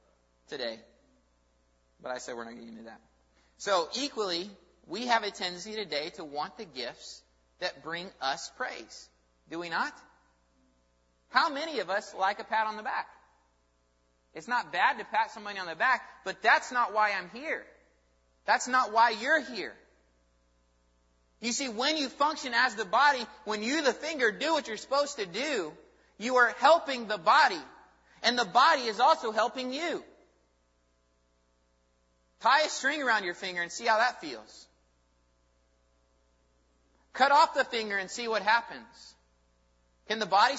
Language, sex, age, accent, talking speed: English, male, 30-49, American, 160 wpm